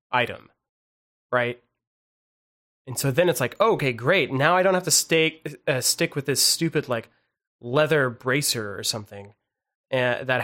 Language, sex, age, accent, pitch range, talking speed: English, male, 20-39, American, 115-145 Hz, 150 wpm